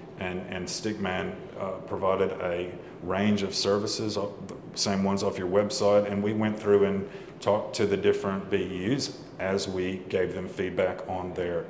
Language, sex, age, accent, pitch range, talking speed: English, male, 40-59, American, 95-105 Hz, 170 wpm